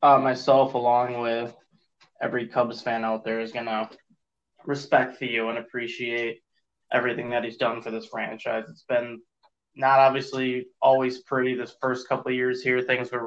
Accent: American